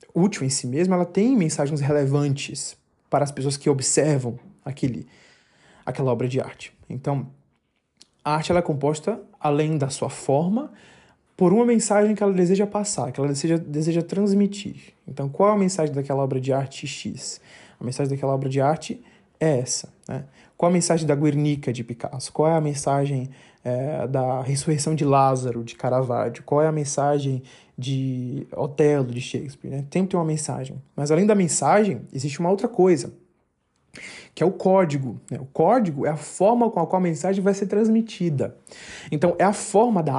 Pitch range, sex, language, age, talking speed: 135-190 Hz, male, Portuguese, 20-39, 180 wpm